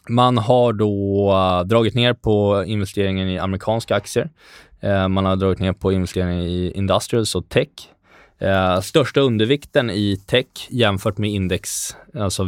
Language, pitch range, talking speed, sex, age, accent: Swedish, 90-110 Hz, 135 wpm, male, 20-39, native